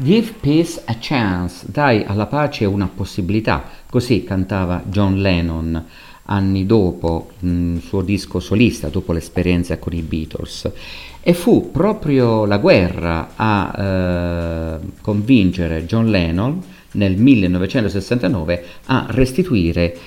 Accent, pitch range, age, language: native, 85-105 Hz, 50-69, Italian